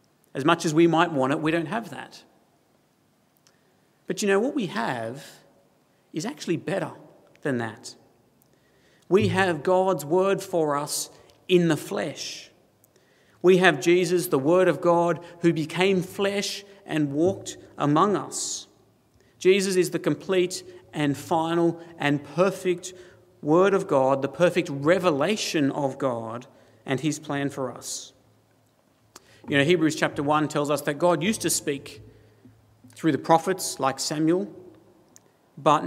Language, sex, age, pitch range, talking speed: English, male, 50-69, 140-180 Hz, 140 wpm